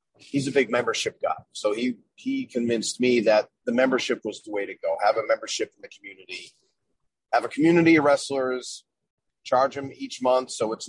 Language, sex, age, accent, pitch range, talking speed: English, male, 30-49, American, 115-140 Hz, 195 wpm